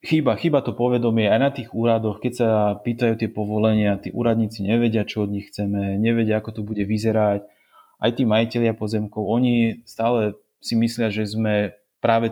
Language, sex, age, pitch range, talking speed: Slovak, male, 30-49, 105-115 Hz, 175 wpm